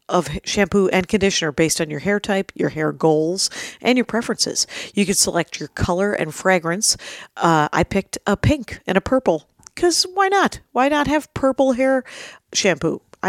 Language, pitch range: English, 175-215 Hz